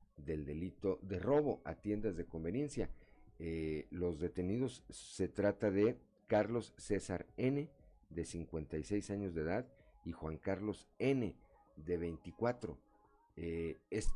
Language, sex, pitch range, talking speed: Spanish, male, 85-110 Hz, 125 wpm